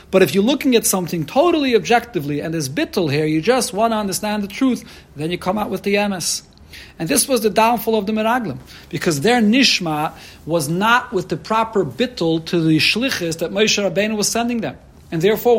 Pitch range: 155-210 Hz